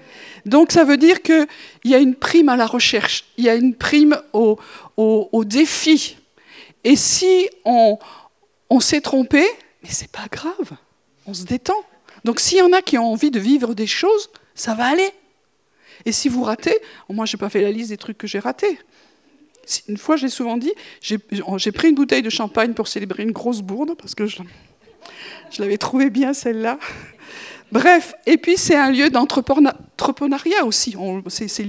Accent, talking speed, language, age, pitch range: French, 190 wpm, French, 50-69, 225-320 Hz